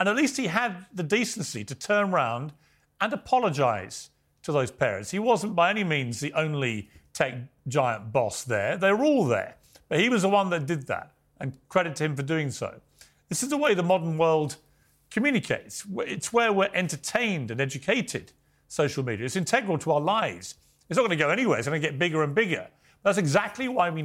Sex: male